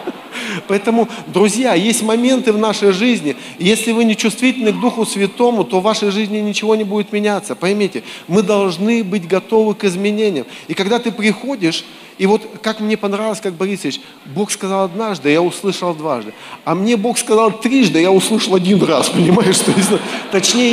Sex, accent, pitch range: male, native, 160-220 Hz